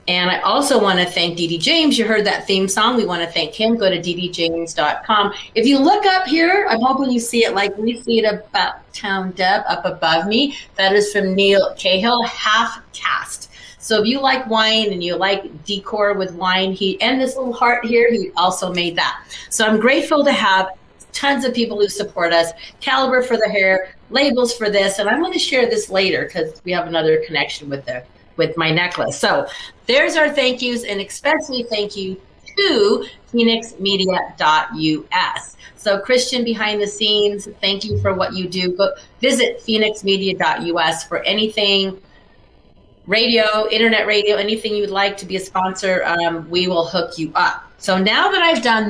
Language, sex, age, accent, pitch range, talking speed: English, female, 40-59, American, 185-235 Hz, 185 wpm